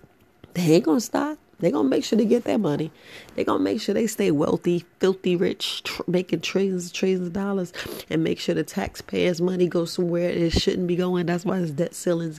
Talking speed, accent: 230 wpm, American